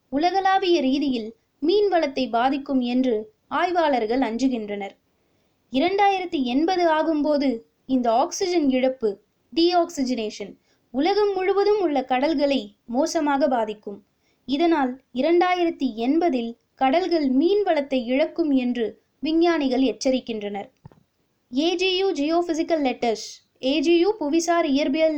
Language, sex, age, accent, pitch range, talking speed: Tamil, female, 20-39, native, 255-335 Hz, 85 wpm